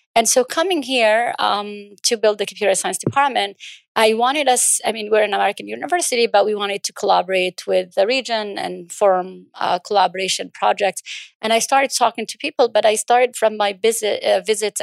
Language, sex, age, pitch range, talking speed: English, female, 30-49, 185-225 Hz, 190 wpm